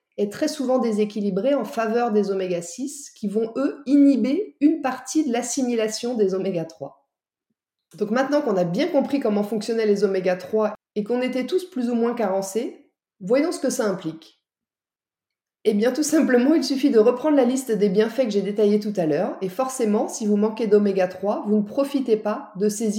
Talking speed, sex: 185 wpm, female